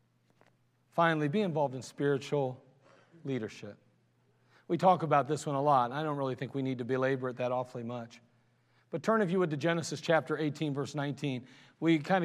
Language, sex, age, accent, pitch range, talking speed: English, male, 40-59, American, 135-195 Hz, 185 wpm